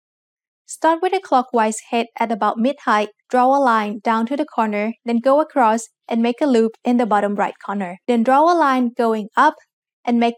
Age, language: 20-39, English